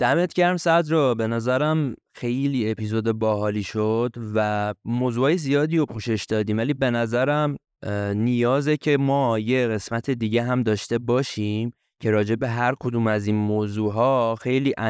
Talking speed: 140 wpm